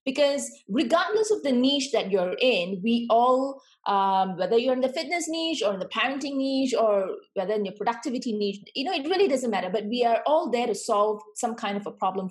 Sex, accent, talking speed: female, Indian, 225 wpm